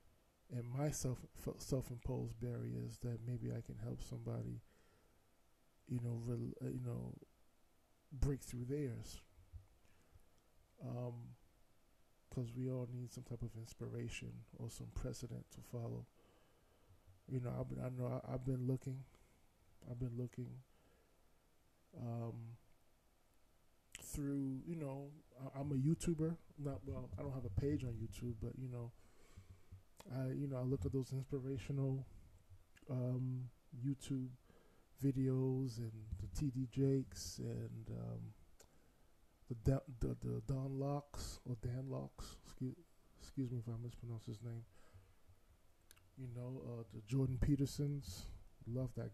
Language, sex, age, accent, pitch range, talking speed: English, male, 20-39, American, 90-130 Hz, 130 wpm